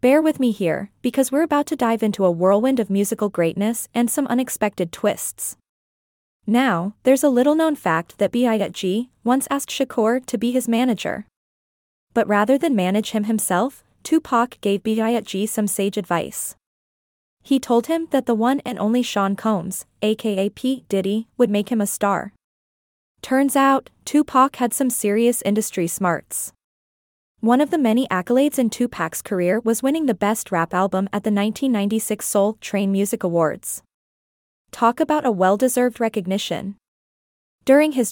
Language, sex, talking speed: English, female, 155 wpm